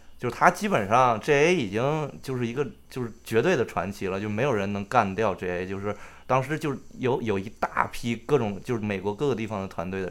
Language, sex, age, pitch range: Chinese, male, 20-39, 100-145 Hz